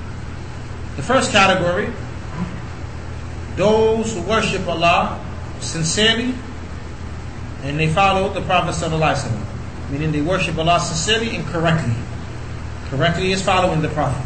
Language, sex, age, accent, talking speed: English, male, 30-49, American, 105 wpm